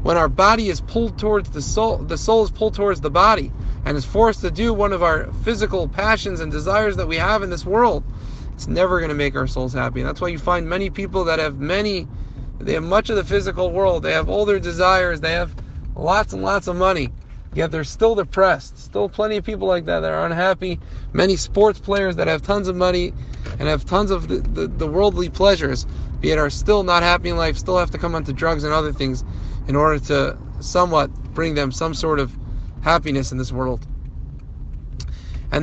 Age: 30-49